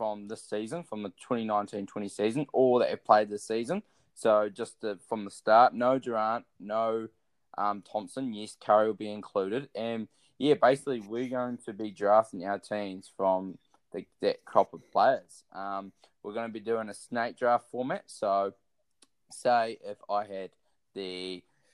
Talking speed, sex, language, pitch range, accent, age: 170 wpm, male, English, 100-125 Hz, Australian, 10-29